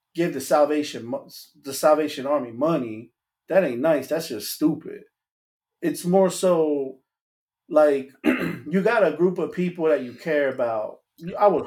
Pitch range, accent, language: 140-180 Hz, American, English